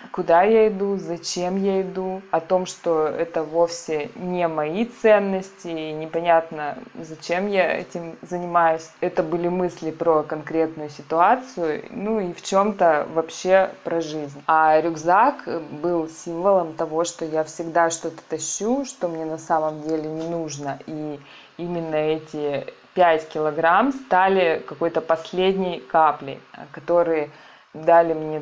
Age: 20-39